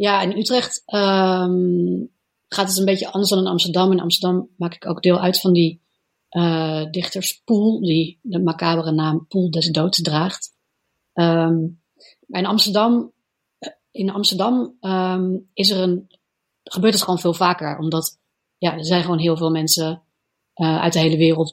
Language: Dutch